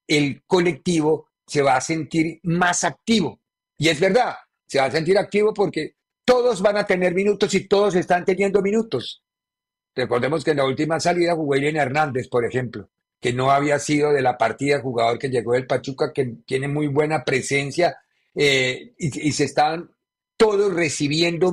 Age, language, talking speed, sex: 50-69, Spanish, 175 wpm, male